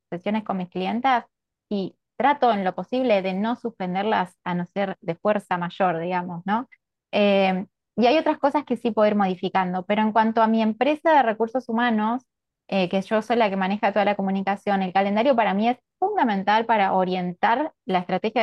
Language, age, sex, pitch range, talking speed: Spanish, 20-39, female, 195-230 Hz, 190 wpm